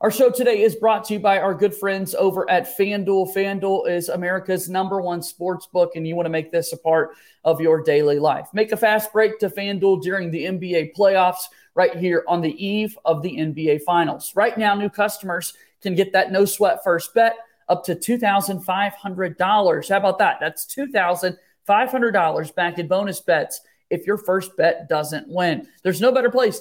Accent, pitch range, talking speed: American, 180-215 Hz, 190 wpm